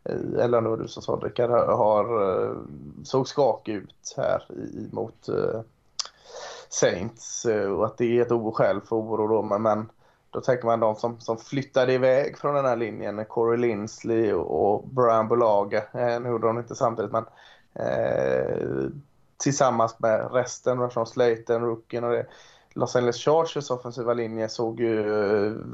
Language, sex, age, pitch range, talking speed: Swedish, male, 20-39, 115-130 Hz, 155 wpm